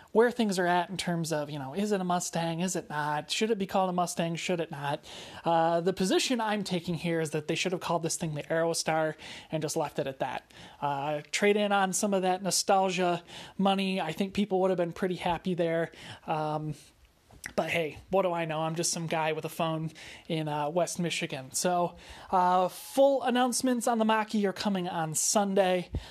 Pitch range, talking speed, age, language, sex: 155-190 Hz, 215 wpm, 30-49, English, male